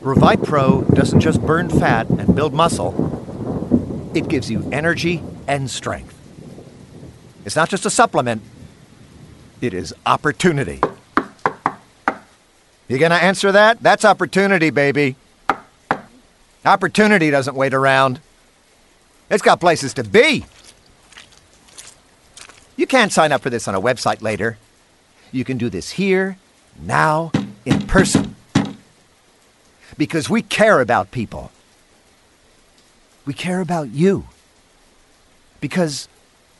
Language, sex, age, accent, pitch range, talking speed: English, male, 50-69, American, 110-165 Hz, 110 wpm